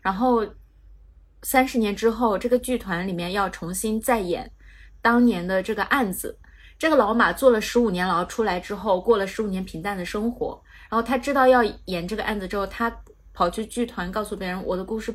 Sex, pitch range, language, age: female, 175-240 Hz, Chinese, 20-39